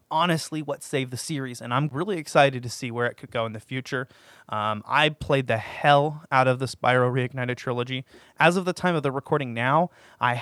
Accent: American